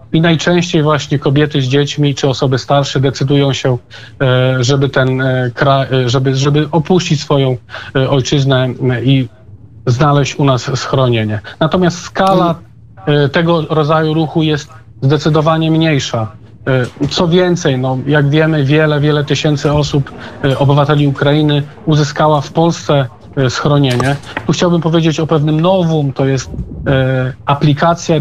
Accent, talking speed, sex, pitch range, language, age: native, 120 wpm, male, 130-155 Hz, Polish, 40-59